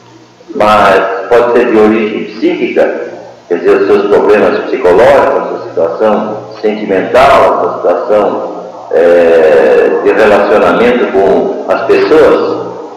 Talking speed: 115 wpm